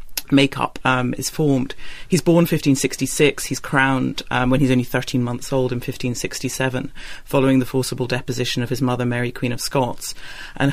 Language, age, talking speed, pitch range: English, 40-59, 170 wpm, 125-140 Hz